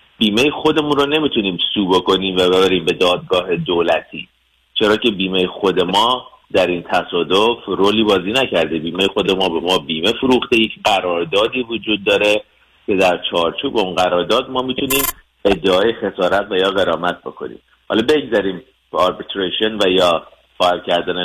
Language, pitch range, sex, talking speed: Persian, 95-125 Hz, male, 150 wpm